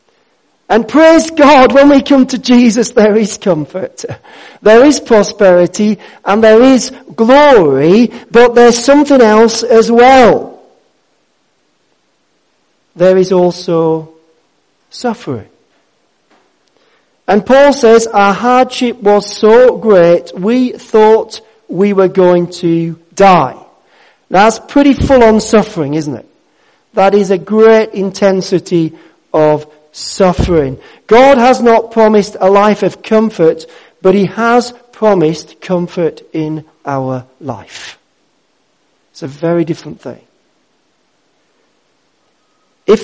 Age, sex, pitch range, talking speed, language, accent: 40-59, male, 170-230 Hz, 110 wpm, English, British